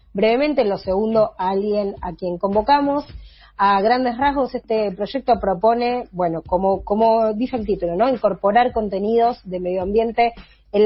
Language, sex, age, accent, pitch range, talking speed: Spanish, female, 20-39, Argentinian, 195-240 Hz, 155 wpm